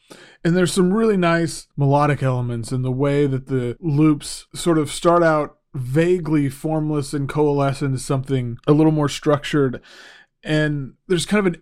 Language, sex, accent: English, male, American